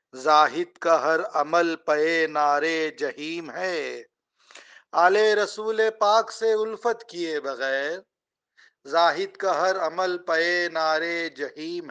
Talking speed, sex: 110 wpm, male